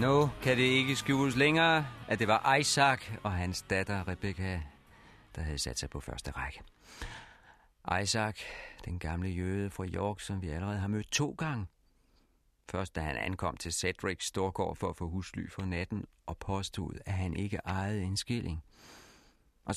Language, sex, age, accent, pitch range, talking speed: Danish, male, 40-59, native, 95-130 Hz, 175 wpm